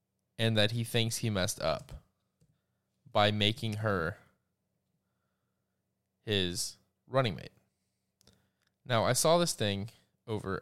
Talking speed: 105 wpm